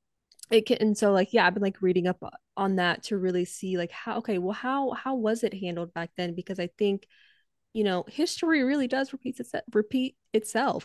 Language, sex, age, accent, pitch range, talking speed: English, female, 20-39, American, 180-220 Hz, 205 wpm